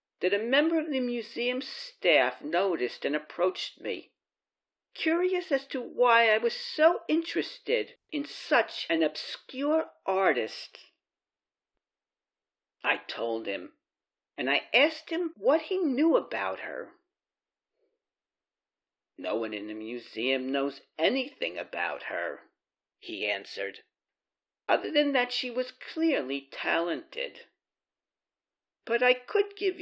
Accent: American